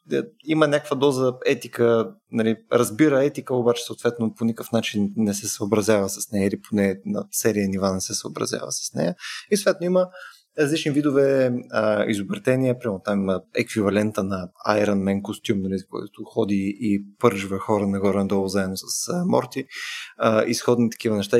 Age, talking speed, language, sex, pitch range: 20-39, 155 wpm, Bulgarian, male, 105-130 Hz